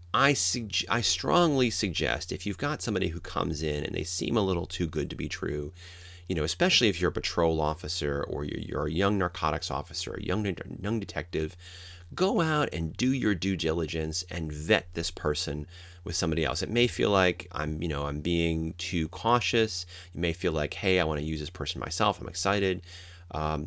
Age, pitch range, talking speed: 30-49, 75-95 Hz, 205 wpm